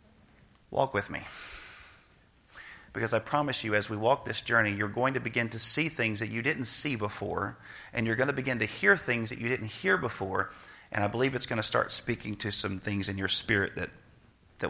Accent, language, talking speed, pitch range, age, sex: American, English, 230 wpm, 110-150 Hz, 40-59, male